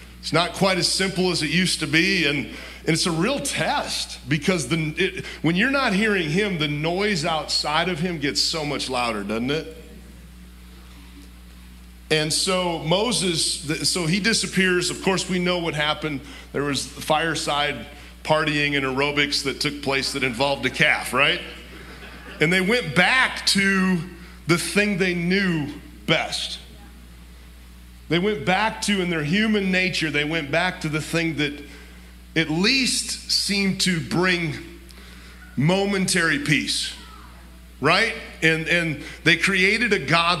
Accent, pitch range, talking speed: American, 140-185 Hz, 145 wpm